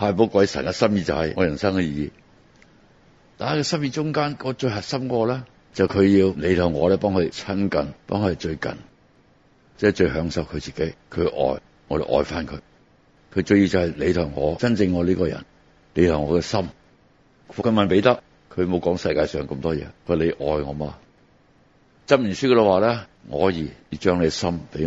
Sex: male